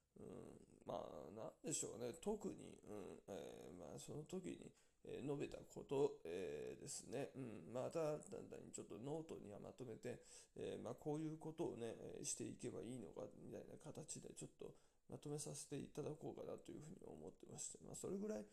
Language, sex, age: Japanese, male, 20-39